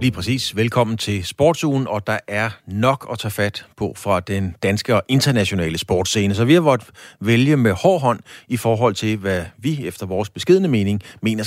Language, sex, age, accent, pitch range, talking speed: Danish, male, 40-59, native, 100-130 Hz, 195 wpm